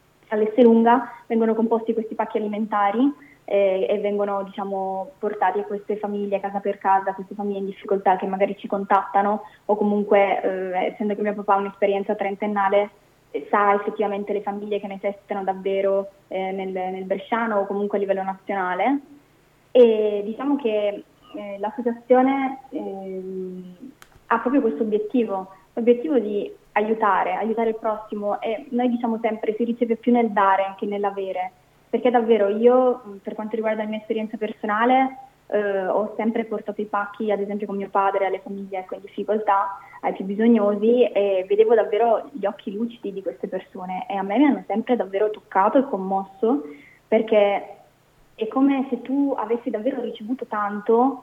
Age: 20-39